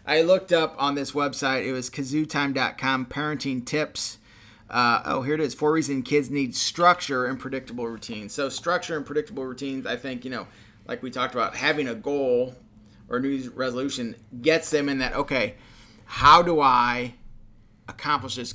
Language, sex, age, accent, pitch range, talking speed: English, male, 30-49, American, 120-140 Hz, 170 wpm